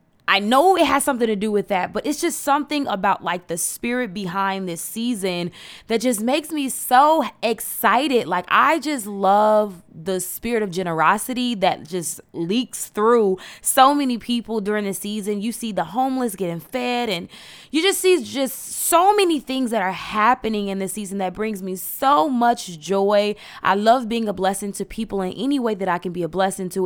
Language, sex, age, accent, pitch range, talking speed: English, female, 20-39, American, 190-250 Hz, 195 wpm